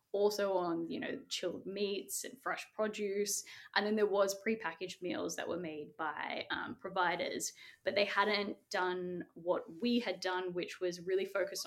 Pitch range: 180-215 Hz